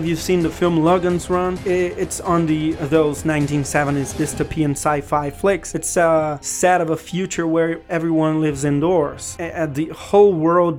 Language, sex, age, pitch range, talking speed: English, male, 30-49, 145-165 Hz, 160 wpm